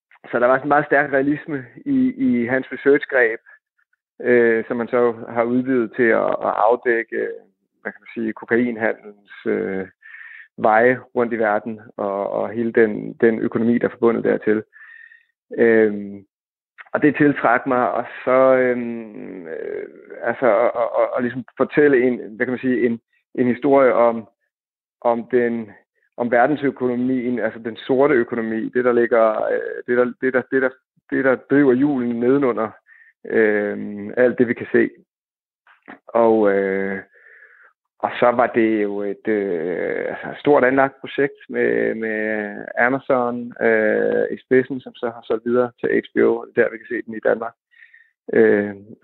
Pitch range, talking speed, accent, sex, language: 110-140 Hz, 140 wpm, native, male, Danish